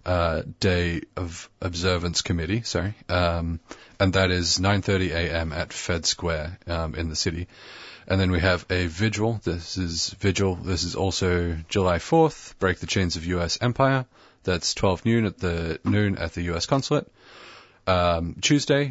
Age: 30-49